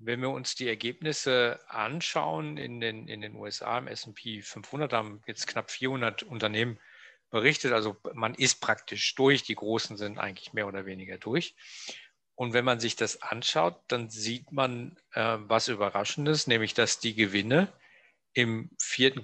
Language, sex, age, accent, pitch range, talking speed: German, male, 40-59, German, 105-125 Hz, 155 wpm